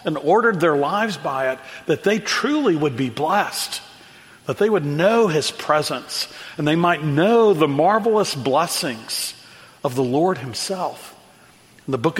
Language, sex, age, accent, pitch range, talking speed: English, male, 50-69, American, 145-195 Hz, 155 wpm